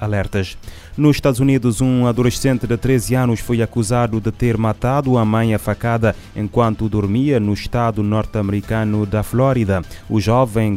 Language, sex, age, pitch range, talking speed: Portuguese, male, 20-39, 100-115 Hz, 145 wpm